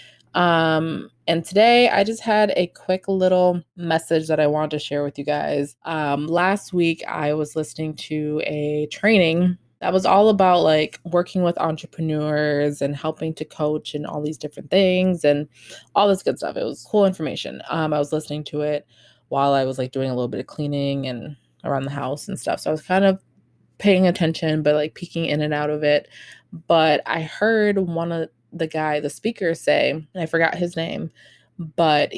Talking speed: 200 wpm